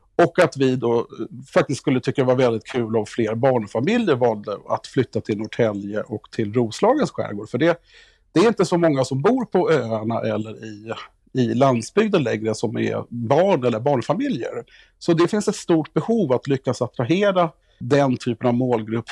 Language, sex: Swedish, male